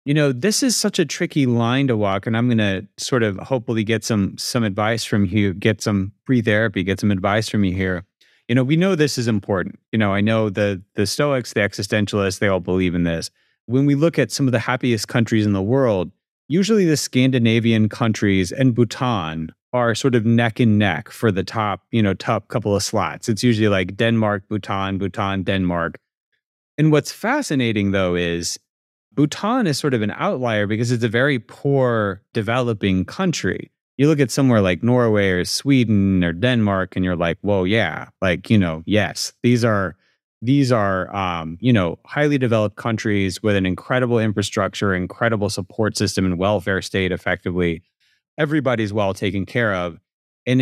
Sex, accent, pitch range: male, American, 100-125 Hz